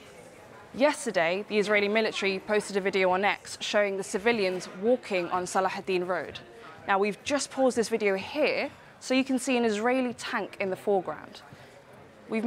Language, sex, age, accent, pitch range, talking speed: English, female, 20-39, British, 190-235 Hz, 170 wpm